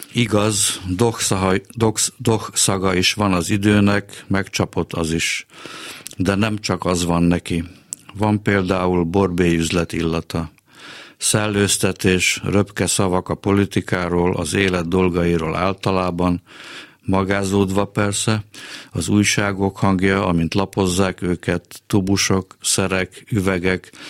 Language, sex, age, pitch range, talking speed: Hungarian, male, 50-69, 90-100 Hz, 95 wpm